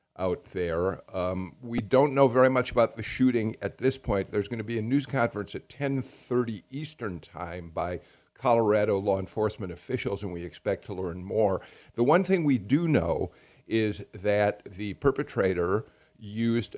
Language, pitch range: English, 95-125 Hz